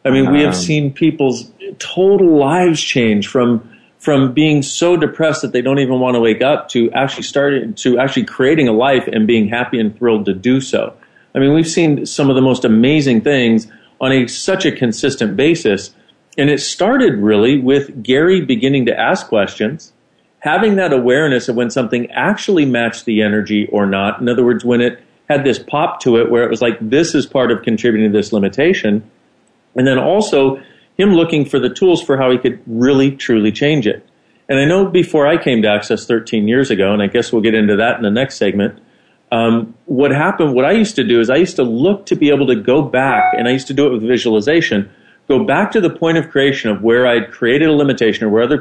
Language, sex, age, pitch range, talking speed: English, male, 40-59, 115-150 Hz, 220 wpm